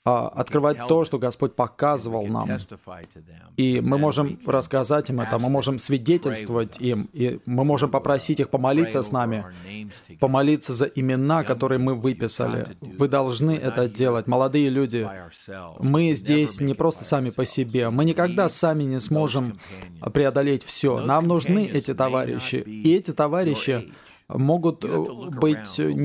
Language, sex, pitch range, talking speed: Russian, male, 125-150 Hz, 135 wpm